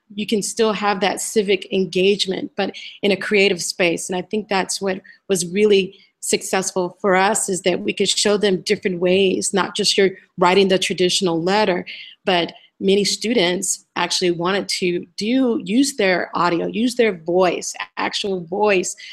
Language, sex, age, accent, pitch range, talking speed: English, female, 30-49, American, 185-215 Hz, 165 wpm